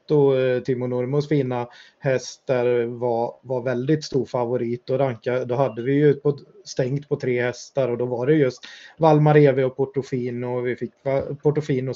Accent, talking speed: native, 165 wpm